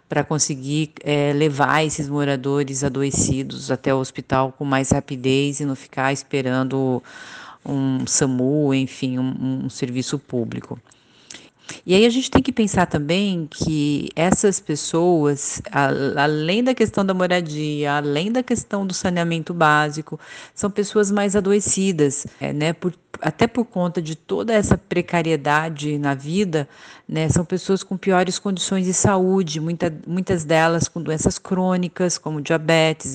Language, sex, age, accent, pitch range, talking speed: Portuguese, female, 40-59, Brazilian, 145-185 Hz, 135 wpm